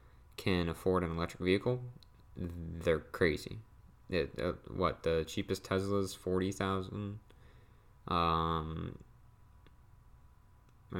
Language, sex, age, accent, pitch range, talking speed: English, male, 20-39, American, 85-100 Hz, 105 wpm